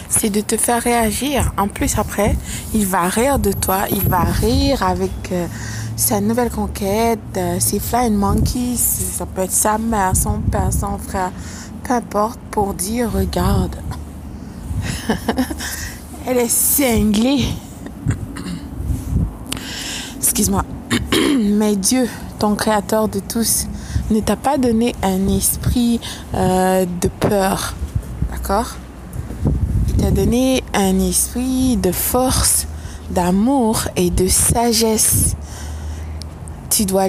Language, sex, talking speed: French, female, 115 wpm